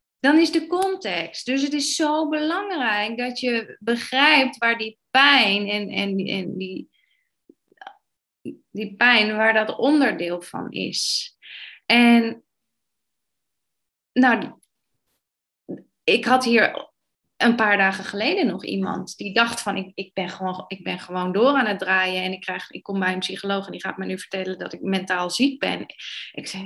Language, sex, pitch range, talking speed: Dutch, female, 195-270 Hz, 160 wpm